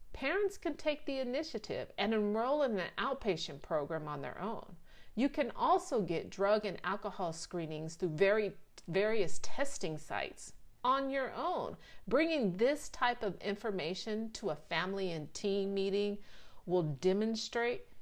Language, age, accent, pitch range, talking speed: English, 50-69, American, 180-250 Hz, 140 wpm